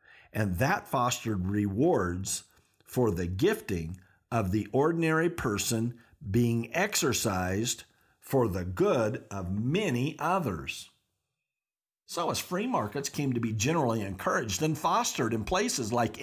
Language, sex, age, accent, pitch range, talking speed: English, male, 50-69, American, 110-165 Hz, 120 wpm